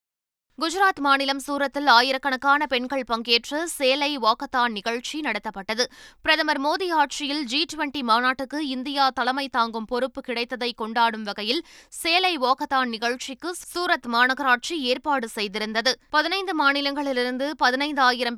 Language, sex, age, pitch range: Tamil, female, 20-39, 235-280 Hz